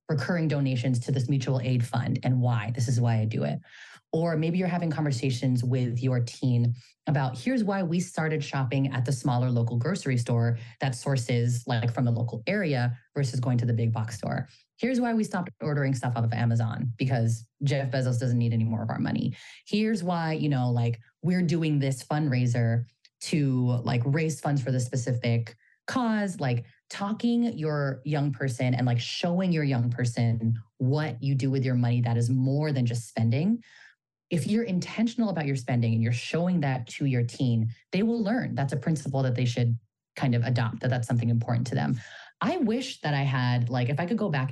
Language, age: English, 20-39